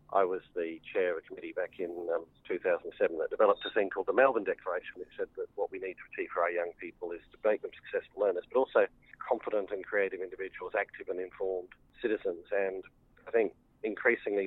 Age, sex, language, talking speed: 40-59, male, English, 210 wpm